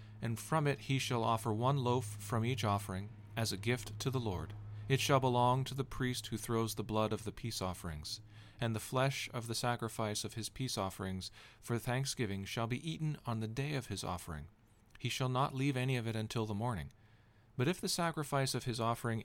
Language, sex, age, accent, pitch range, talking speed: English, male, 40-59, American, 105-130 Hz, 215 wpm